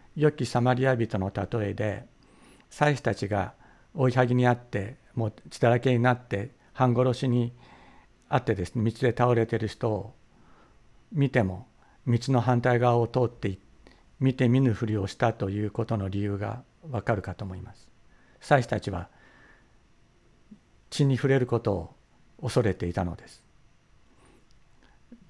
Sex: male